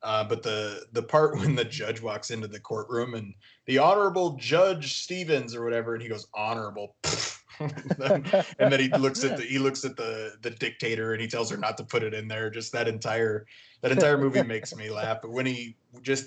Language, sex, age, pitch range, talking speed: English, male, 20-39, 110-130 Hz, 215 wpm